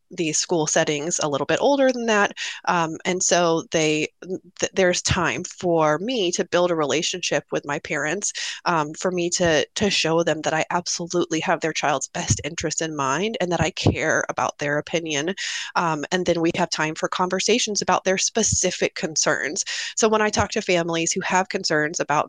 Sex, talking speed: female, 190 wpm